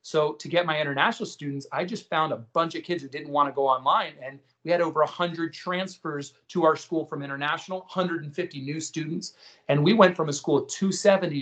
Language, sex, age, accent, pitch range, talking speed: English, male, 40-59, American, 135-170 Hz, 215 wpm